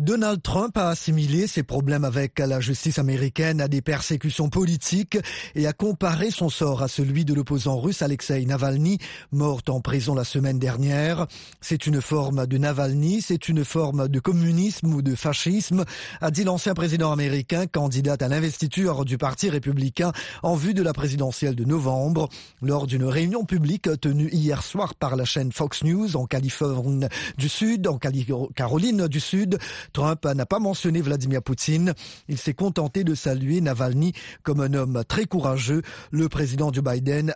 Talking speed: 165 wpm